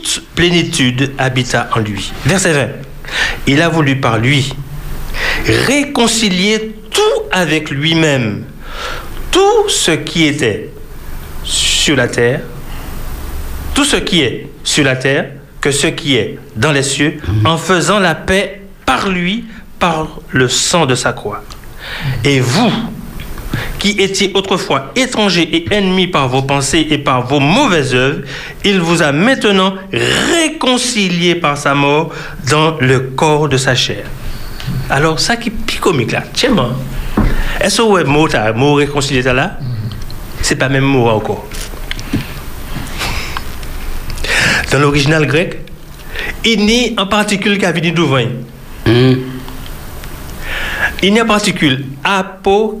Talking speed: 130 wpm